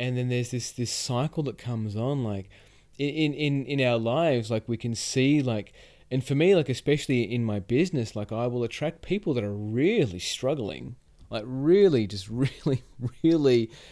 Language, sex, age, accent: English, male, 30-49, Australian